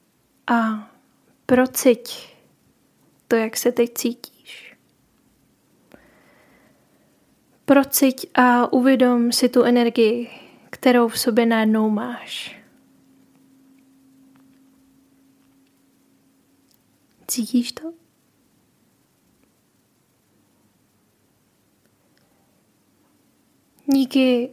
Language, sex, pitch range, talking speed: Czech, female, 235-260 Hz, 50 wpm